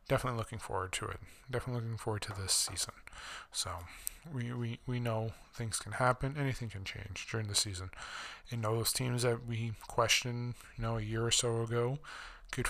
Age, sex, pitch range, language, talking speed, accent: 20-39, male, 105-120 Hz, English, 180 wpm, American